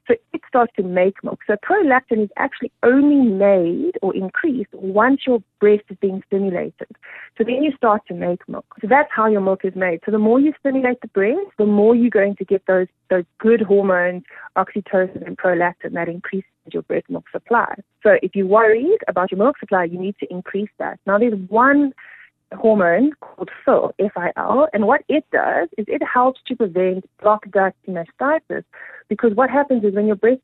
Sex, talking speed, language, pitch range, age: female, 195 wpm, English, 185-240 Hz, 30-49